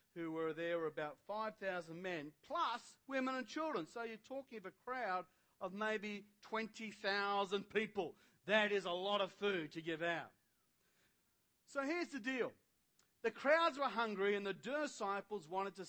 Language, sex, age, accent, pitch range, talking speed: English, male, 40-59, Australian, 185-250 Hz, 160 wpm